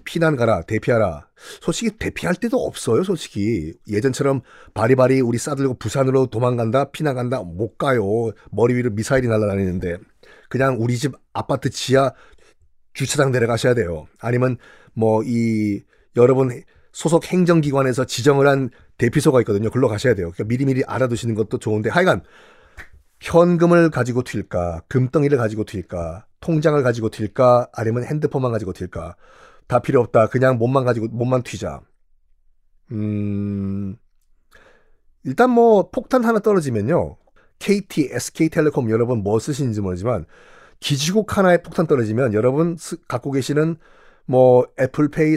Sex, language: male, Korean